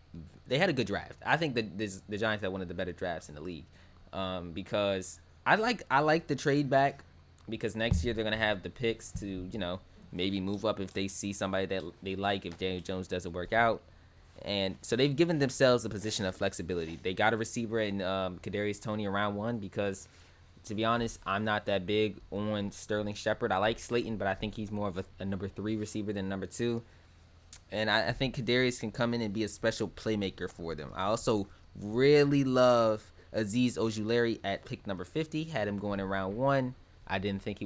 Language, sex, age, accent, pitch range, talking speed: English, male, 20-39, American, 95-110 Hz, 220 wpm